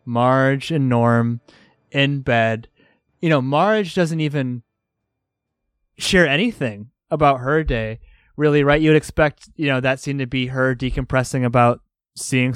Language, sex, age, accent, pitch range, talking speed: English, male, 20-39, American, 125-155 Hz, 140 wpm